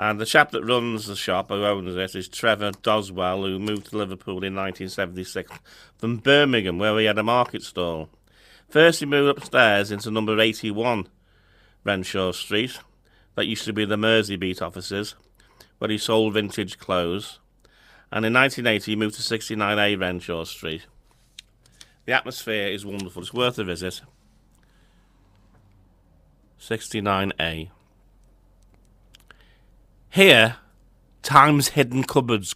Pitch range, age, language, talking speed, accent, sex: 95-115 Hz, 40-59, English, 130 wpm, British, male